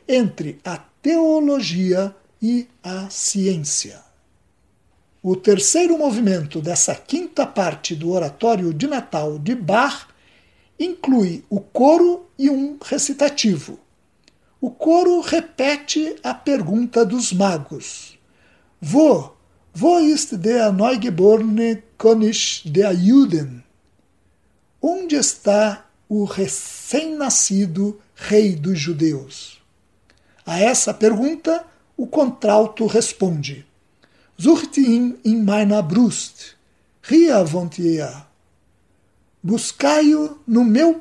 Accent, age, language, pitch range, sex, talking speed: Brazilian, 60-79, Portuguese, 180-285 Hz, male, 90 wpm